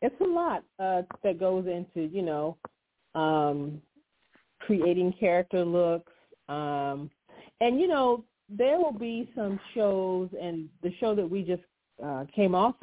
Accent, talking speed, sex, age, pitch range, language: American, 145 wpm, female, 40-59, 175-205 Hz, English